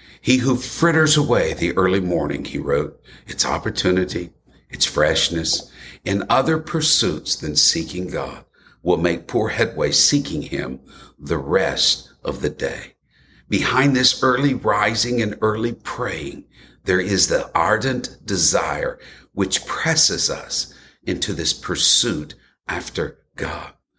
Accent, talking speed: American, 125 wpm